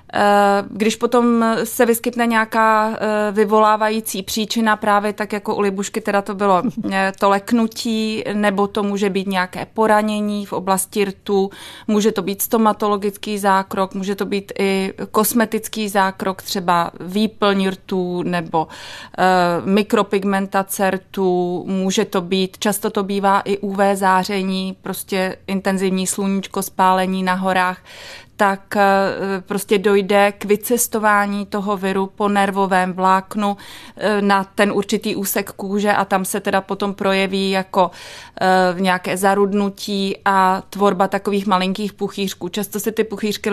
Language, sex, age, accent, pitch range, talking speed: Czech, female, 30-49, native, 195-210 Hz, 125 wpm